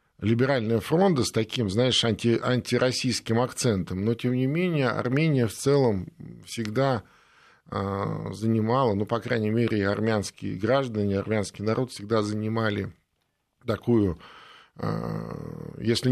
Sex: male